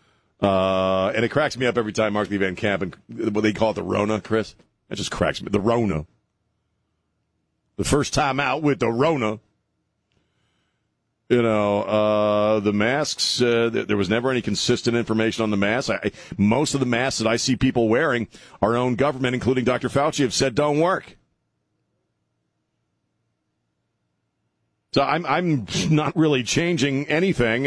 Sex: male